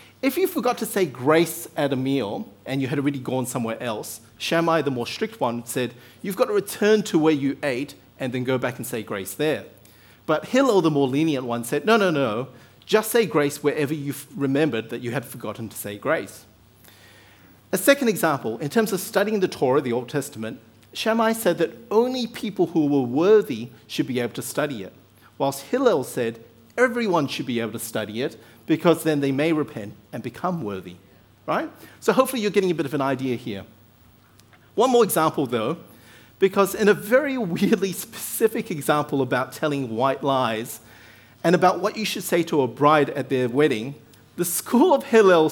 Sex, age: male, 40-59